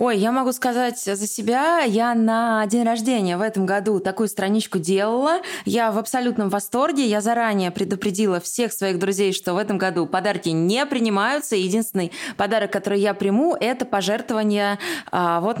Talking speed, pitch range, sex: 160 wpm, 180-225 Hz, female